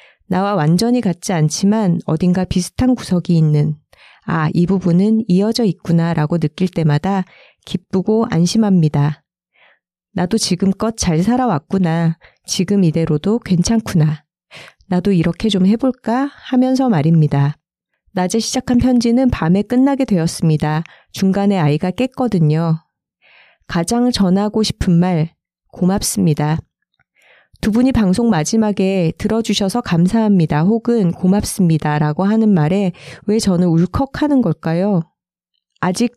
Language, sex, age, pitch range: Korean, female, 40-59, 165-215 Hz